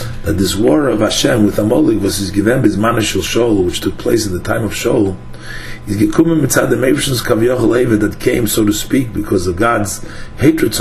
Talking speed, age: 210 wpm, 50-69